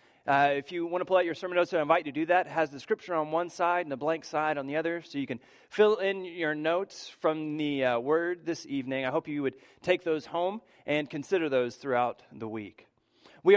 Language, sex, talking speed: English, male, 255 wpm